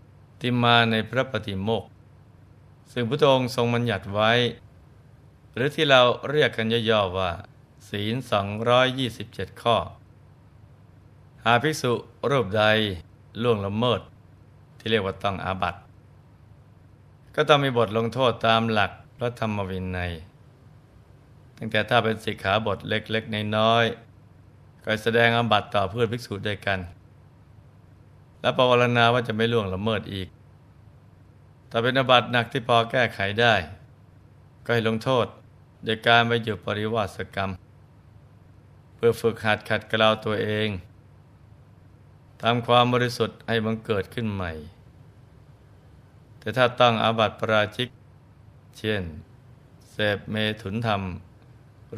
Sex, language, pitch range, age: male, Thai, 105-120 Hz, 20-39